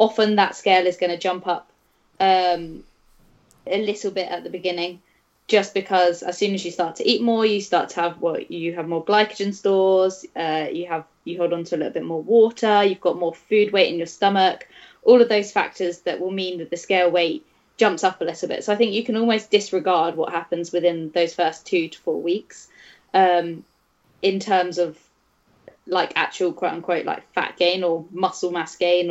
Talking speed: 210 wpm